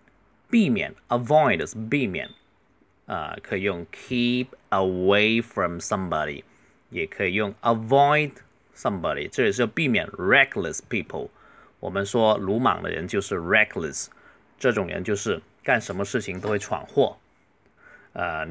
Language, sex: Chinese, male